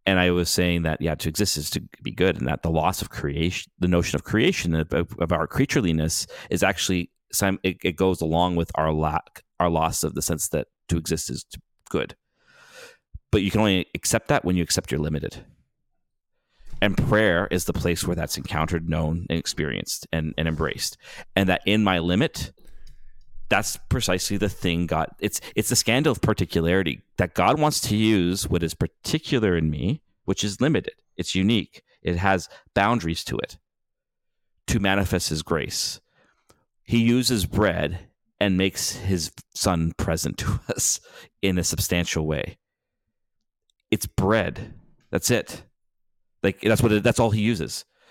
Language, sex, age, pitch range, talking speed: English, male, 30-49, 85-100 Hz, 170 wpm